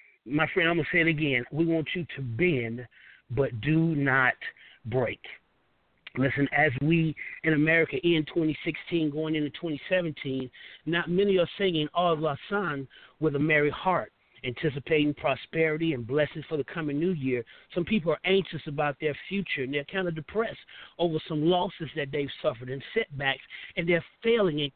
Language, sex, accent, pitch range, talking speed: English, male, American, 145-180 Hz, 170 wpm